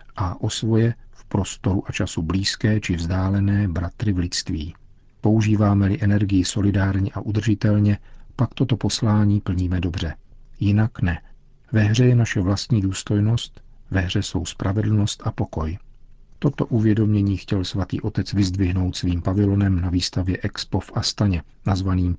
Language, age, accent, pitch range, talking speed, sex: Czech, 50-69, native, 95-110 Hz, 135 wpm, male